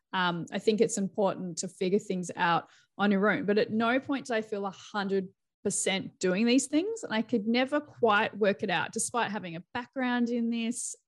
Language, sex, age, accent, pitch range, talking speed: English, female, 20-39, Australian, 180-230 Hz, 200 wpm